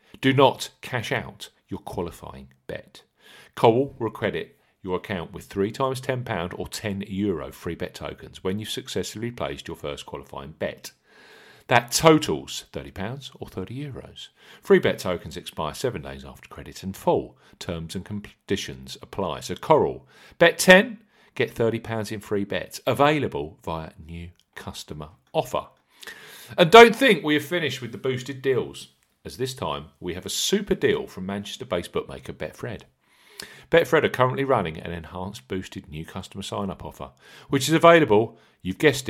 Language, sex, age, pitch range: English, male, 50-69, 90-135 Hz